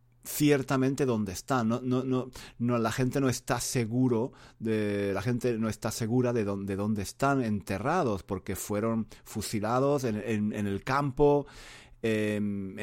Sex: male